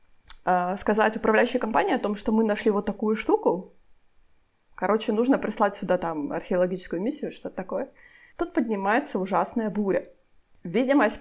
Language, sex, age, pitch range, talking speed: Ukrainian, female, 20-39, 190-250 Hz, 135 wpm